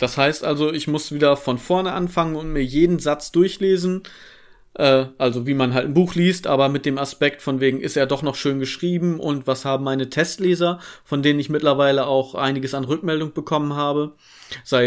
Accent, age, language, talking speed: German, 40-59, German, 200 wpm